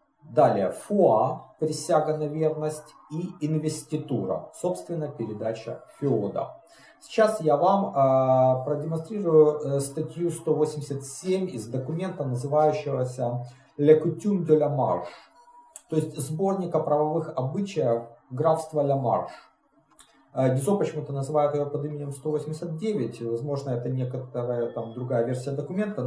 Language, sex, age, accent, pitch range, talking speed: Russian, male, 40-59, native, 125-165 Hz, 100 wpm